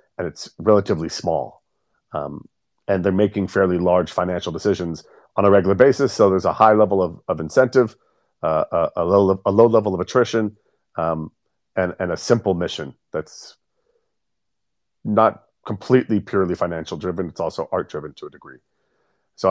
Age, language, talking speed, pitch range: 40-59, English, 155 wpm, 90-115 Hz